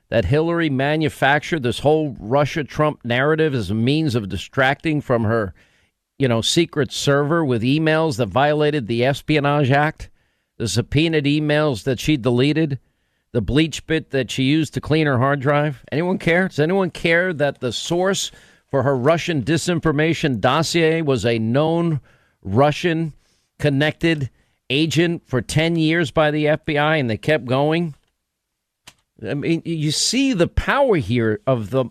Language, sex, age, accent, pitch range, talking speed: English, male, 50-69, American, 125-155 Hz, 150 wpm